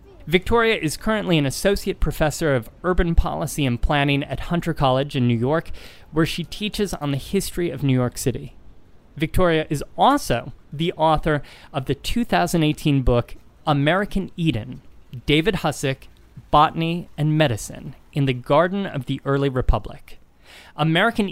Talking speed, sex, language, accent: 145 wpm, male, English, American